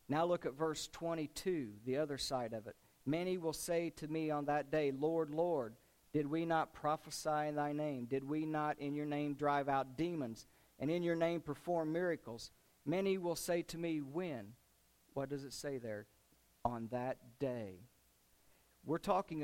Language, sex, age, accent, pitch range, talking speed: English, male, 50-69, American, 130-165 Hz, 180 wpm